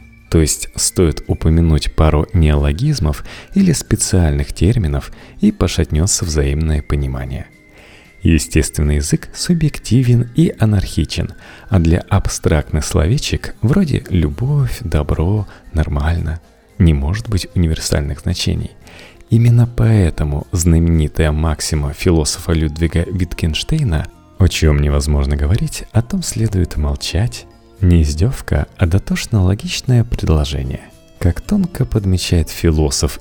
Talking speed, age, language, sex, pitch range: 100 wpm, 30-49, Russian, male, 80-110 Hz